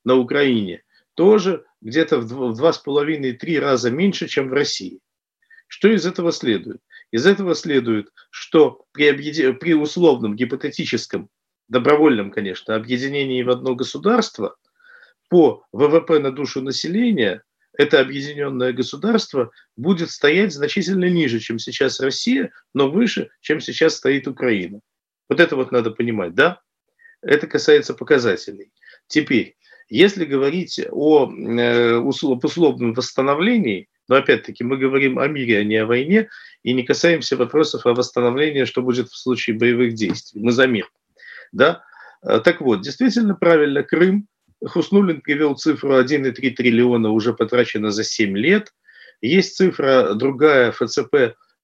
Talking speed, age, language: 130 wpm, 50-69, Russian